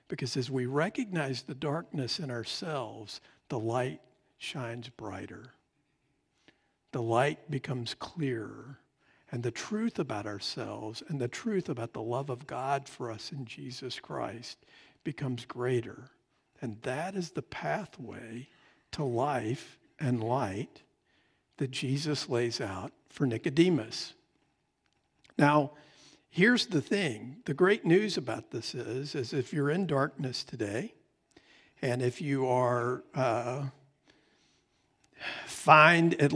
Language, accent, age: English, American, 50-69